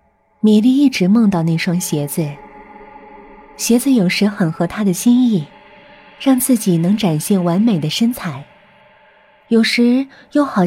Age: 20-39